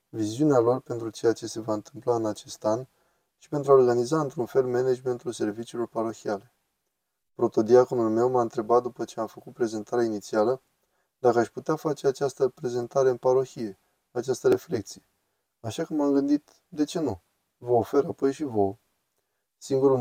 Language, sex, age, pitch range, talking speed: Romanian, male, 20-39, 110-135 Hz, 160 wpm